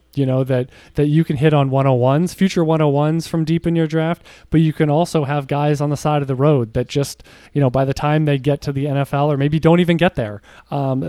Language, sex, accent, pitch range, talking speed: English, male, American, 130-155 Hz, 275 wpm